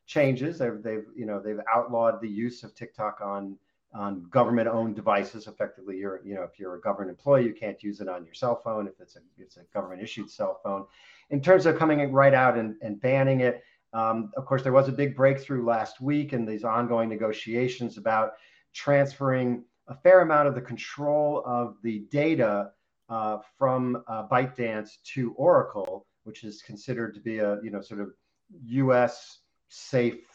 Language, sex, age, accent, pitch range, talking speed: English, male, 40-59, American, 110-135 Hz, 185 wpm